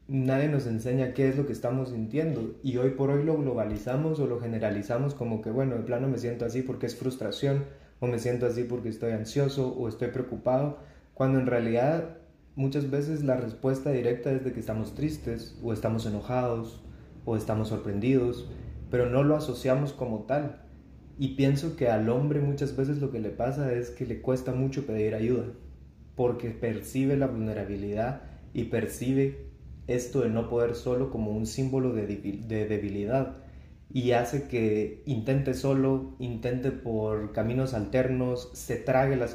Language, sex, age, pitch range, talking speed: Spanish, male, 30-49, 115-135 Hz, 170 wpm